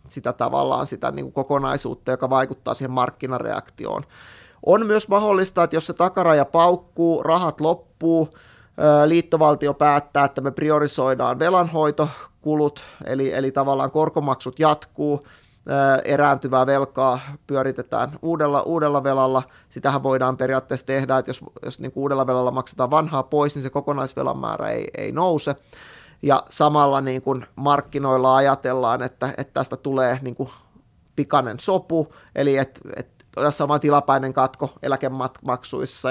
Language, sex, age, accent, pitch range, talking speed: Finnish, male, 30-49, native, 130-150 Hz, 130 wpm